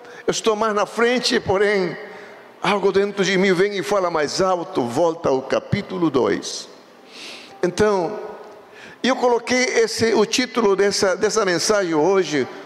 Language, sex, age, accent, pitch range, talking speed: Portuguese, male, 60-79, Brazilian, 185-235 Hz, 130 wpm